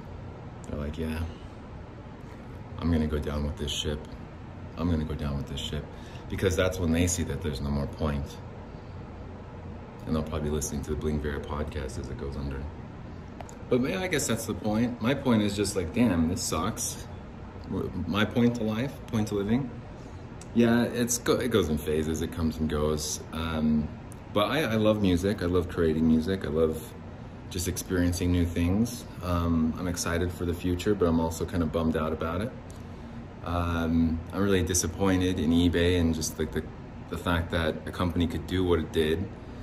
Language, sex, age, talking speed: English, male, 30-49, 190 wpm